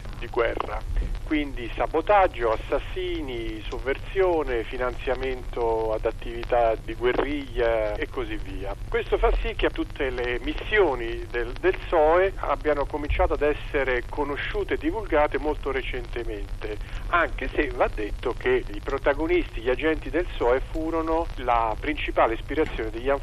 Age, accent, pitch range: 50-69, native, 115-160 Hz